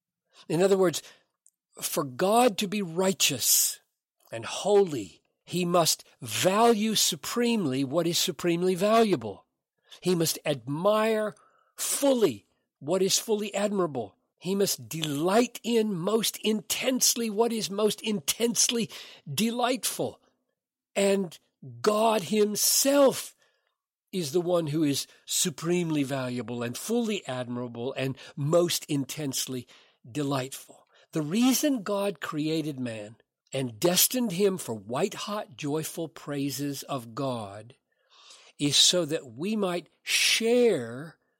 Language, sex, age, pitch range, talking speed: English, male, 50-69, 145-210 Hz, 105 wpm